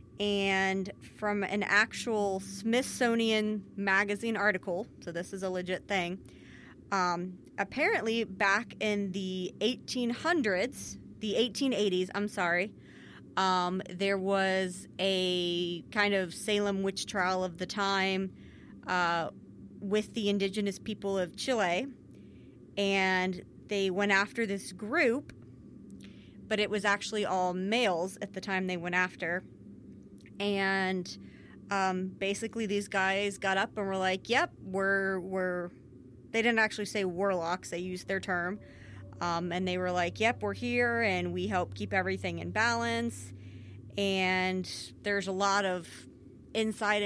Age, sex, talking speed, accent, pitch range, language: 30-49, female, 130 wpm, American, 180-205 Hz, English